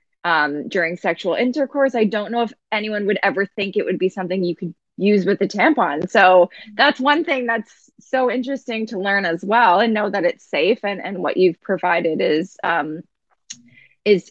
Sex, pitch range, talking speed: female, 185-235 Hz, 195 wpm